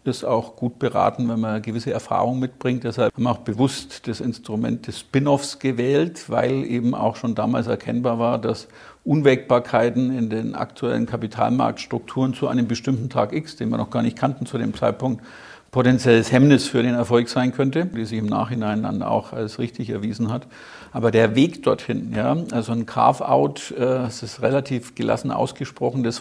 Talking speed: 180 wpm